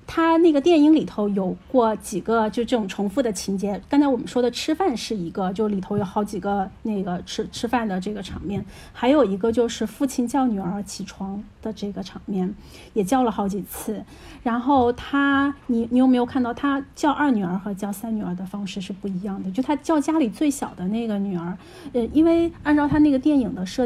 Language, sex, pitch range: Chinese, female, 200-265 Hz